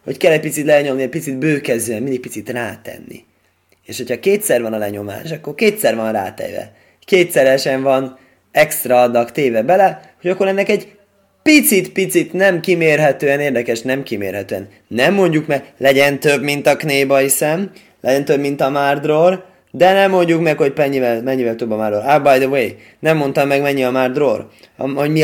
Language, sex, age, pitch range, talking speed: Hungarian, male, 20-39, 125-175 Hz, 170 wpm